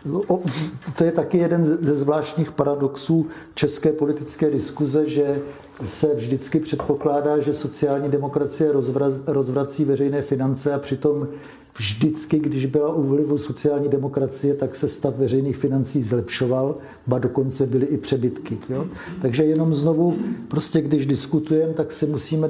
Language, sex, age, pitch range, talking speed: Czech, male, 50-69, 135-155 Hz, 135 wpm